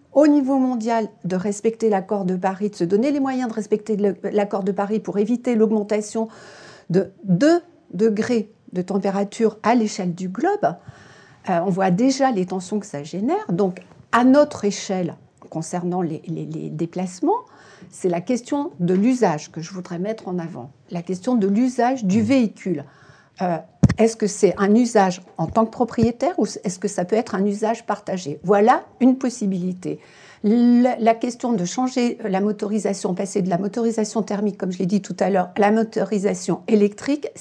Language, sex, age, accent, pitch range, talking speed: French, female, 60-79, French, 180-230 Hz, 175 wpm